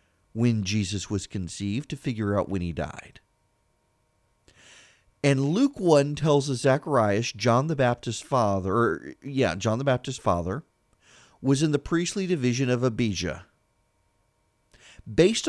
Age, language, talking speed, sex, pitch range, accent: 40-59, English, 130 wpm, male, 120-165 Hz, American